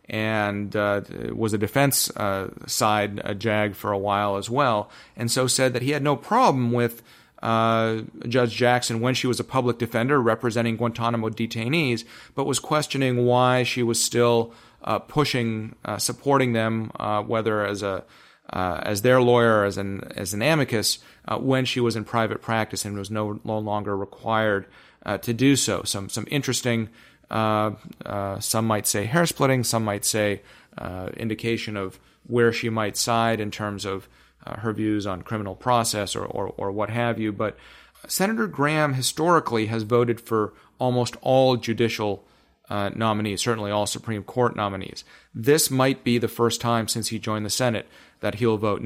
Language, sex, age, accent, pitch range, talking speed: English, male, 40-59, American, 105-125 Hz, 175 wpm